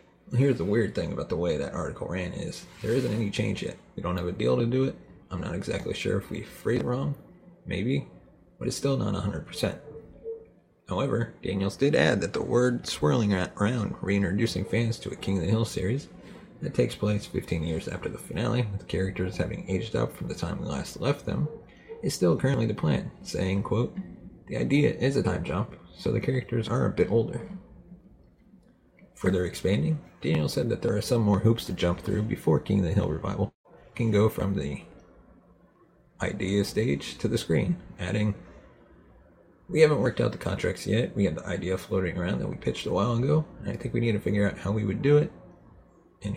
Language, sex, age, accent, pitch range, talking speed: English, male, 30-49, American, 95-125 Hz, 210 wpm